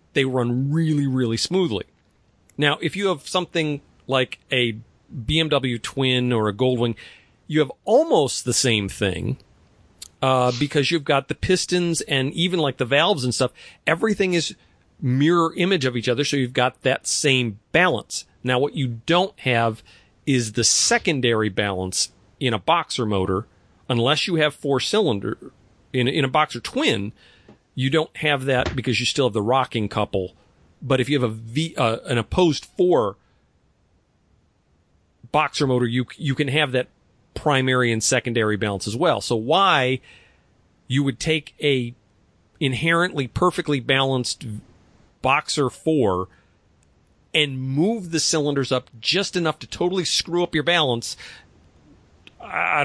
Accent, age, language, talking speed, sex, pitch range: American, 40-59, English, 150 wpm, male, 105-150 Hz